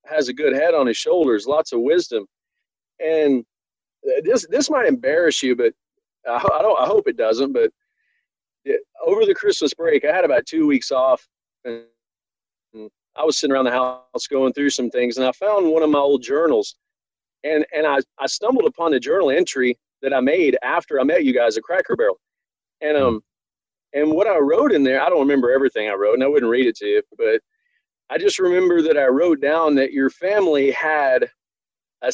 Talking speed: 200 wpm